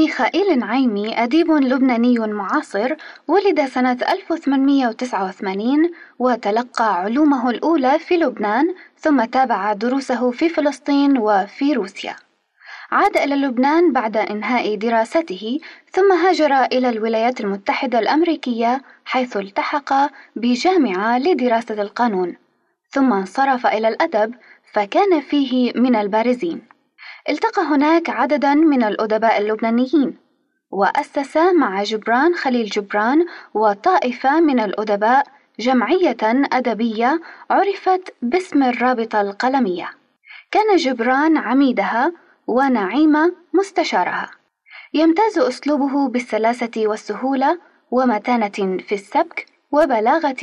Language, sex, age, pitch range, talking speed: Arabic, female, 20-39, 225-310 Hz, 95 wpm